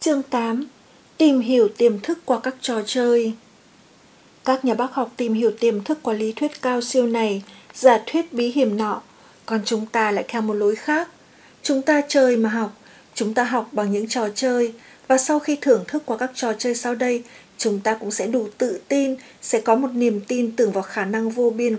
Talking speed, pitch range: 215 wpm, 225-260 Hz